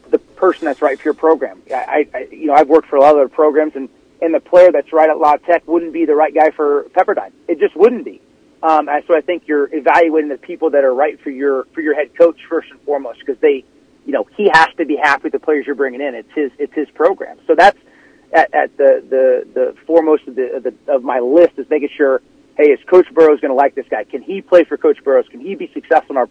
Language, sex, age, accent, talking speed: English, male, 30-49, American, 270 wpm